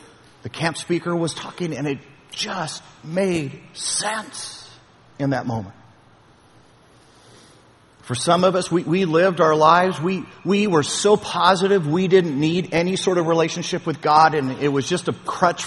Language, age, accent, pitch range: English, 50-69, American, 140-180 Hz